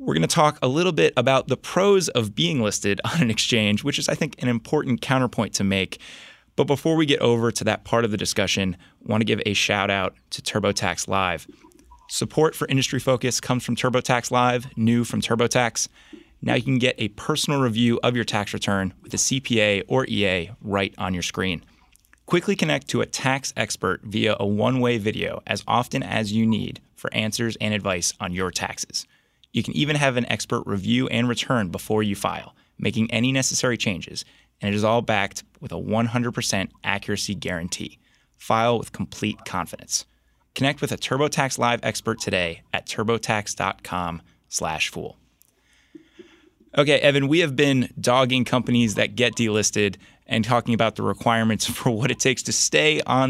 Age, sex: 20-39, male